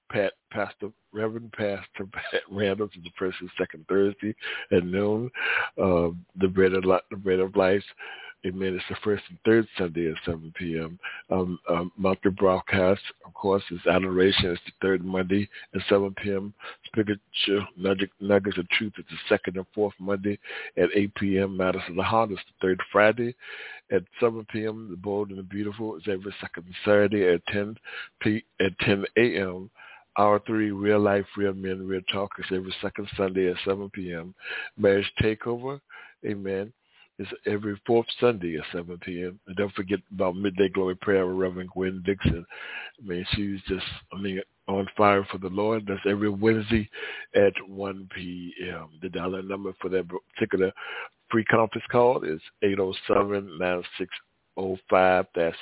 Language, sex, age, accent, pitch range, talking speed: English, male, 60-79, American, 90-100 Hz, 165 wpm